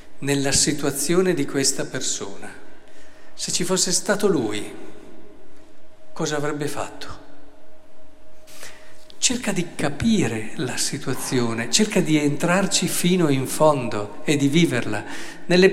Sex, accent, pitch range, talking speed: male, native, 125-170 Hz, 105 wpm